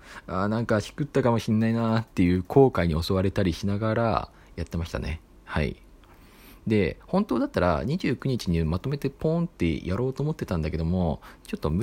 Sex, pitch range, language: male, 90-140 Hz, Japanese